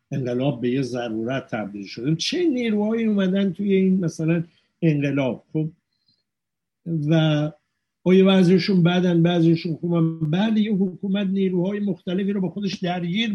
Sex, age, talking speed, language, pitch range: male, 60-79, 125 wpm, Persian, 135-185 Hz